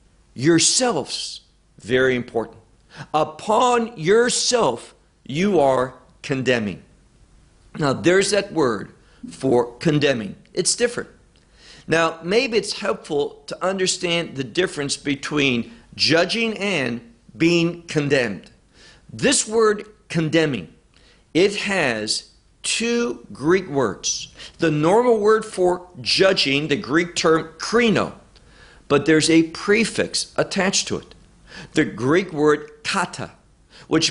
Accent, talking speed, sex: American, 100 wpm, male